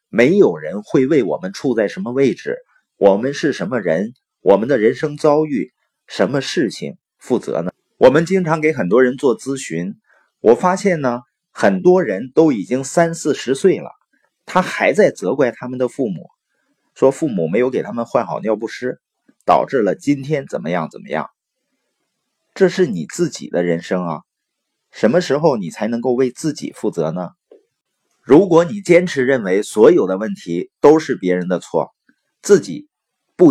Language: Chinese